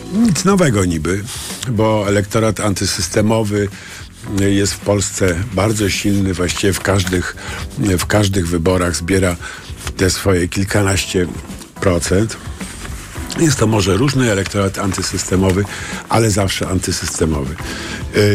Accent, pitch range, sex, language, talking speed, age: native, 90-105 Hz, male, Polish, 100 wpm, 50-69